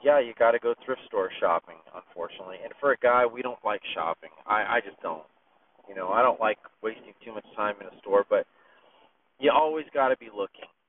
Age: 30-49